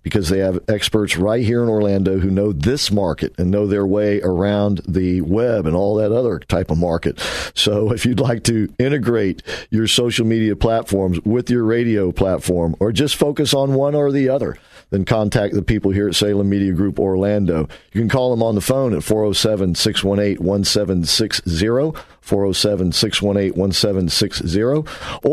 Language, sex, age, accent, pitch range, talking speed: English, male, 50-69, American, 100-125 Hz, 160 wpm